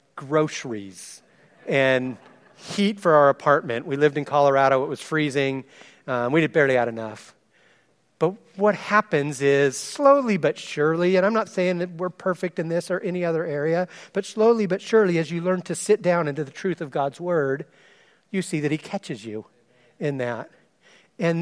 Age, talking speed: 40-59, 180 wpm